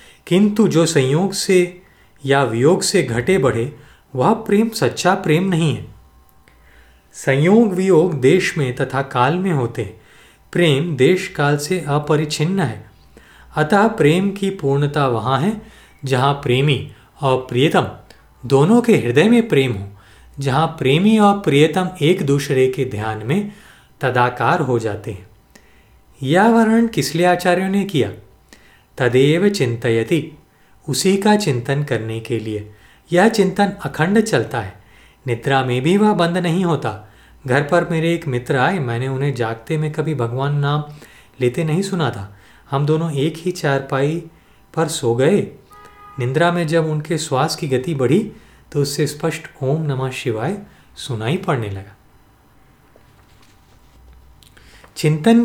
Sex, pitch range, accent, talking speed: male, 125-175 Hz, native, 140 wpm